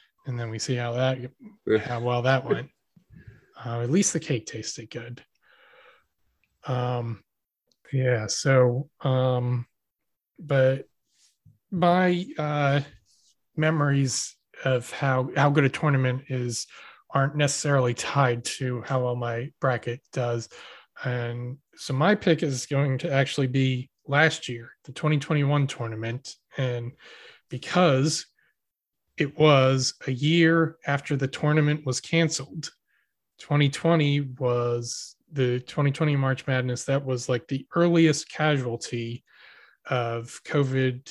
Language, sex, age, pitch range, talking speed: English, male, 20-39, 120-145 Hz, 120 wpm